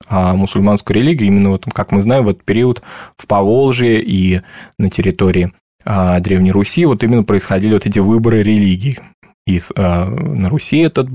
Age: 20-39